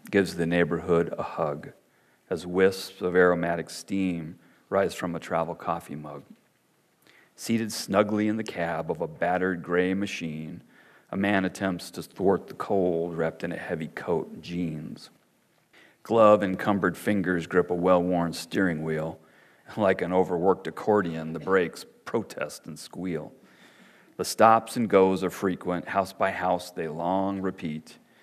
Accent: American